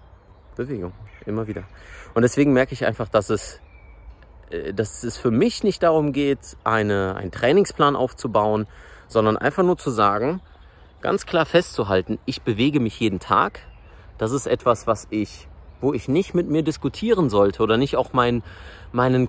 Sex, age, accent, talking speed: male, 30-49, German, 145 wpm